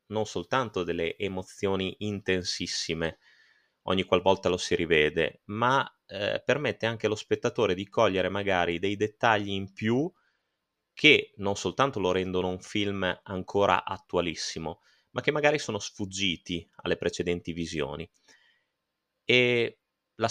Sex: male